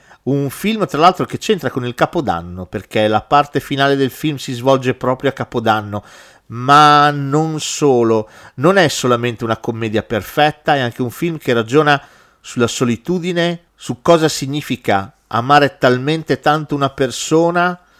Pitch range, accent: 115-145 Hz, native